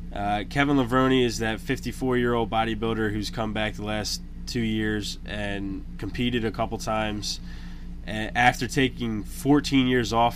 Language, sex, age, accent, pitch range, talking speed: English, male, 20-39, American, 90-125 Hz, 140 wpm